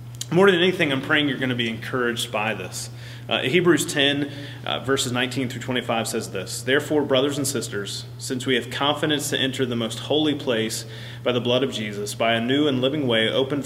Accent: American